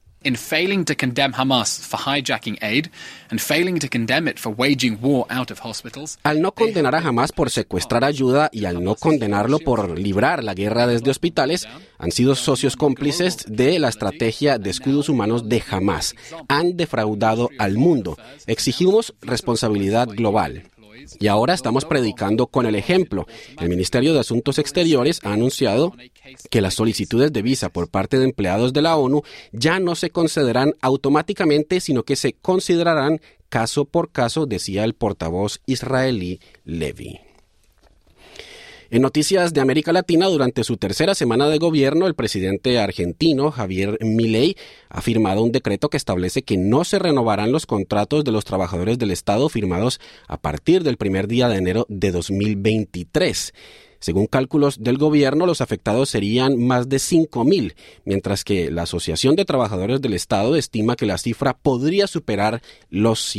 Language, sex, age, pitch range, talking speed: Spanish, male, 30-49, 105-145 Hz, 140 wpm